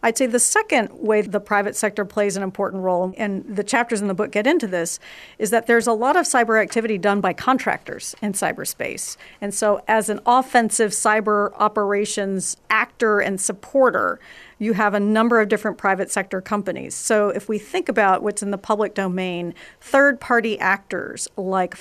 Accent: American